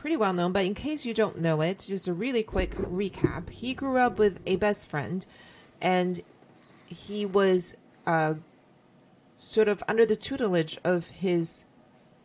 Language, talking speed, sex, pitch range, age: English, 155 wpm, female, 165-210 Hz, 30-49